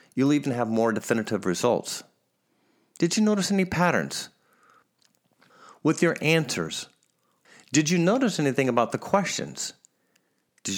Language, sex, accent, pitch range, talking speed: English, male, American, 115-180 Hz, 120 wpm